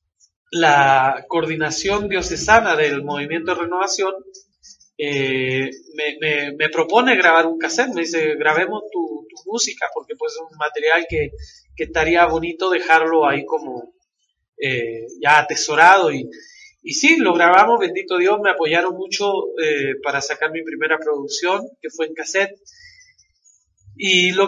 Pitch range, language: 155-220 Hz, Spanish